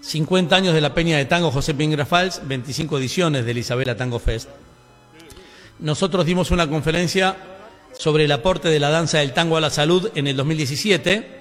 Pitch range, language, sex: 135-175 Hz, Spanish, male